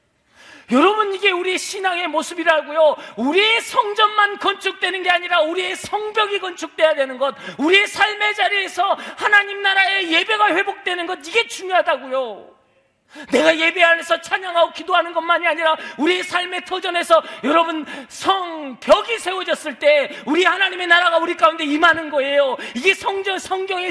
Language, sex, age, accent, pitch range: Korean, male, 40-59, native, 245-355 Hz